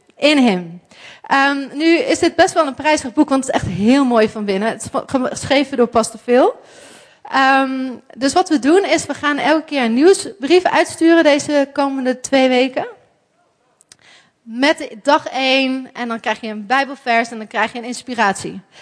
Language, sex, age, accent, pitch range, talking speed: English, female, 30-49, Dutch, 245-320 Hz, 180 wpm